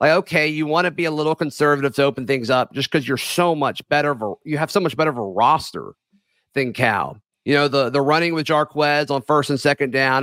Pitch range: 130-170 Hz